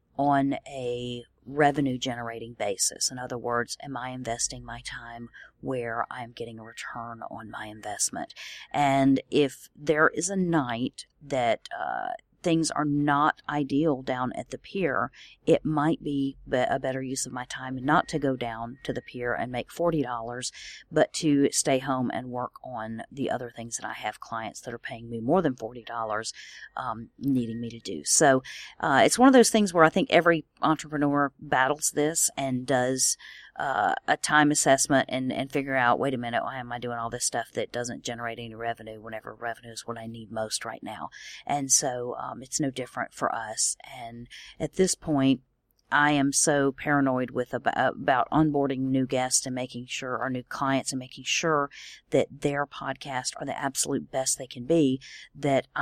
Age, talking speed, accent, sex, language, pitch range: 40-59, 185 wpm, American, female, English, 120-145 Hz